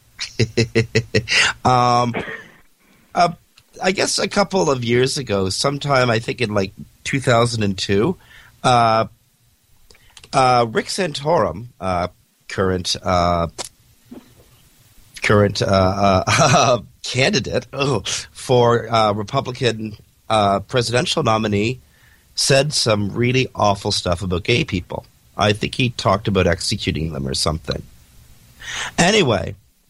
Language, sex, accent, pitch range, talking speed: English, male, American, 100-130 Hz, 100 wpm